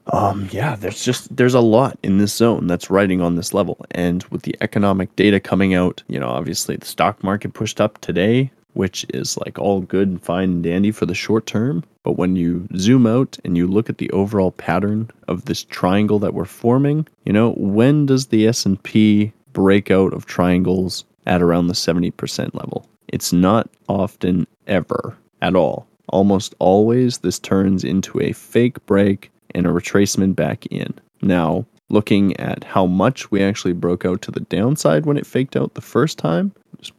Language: English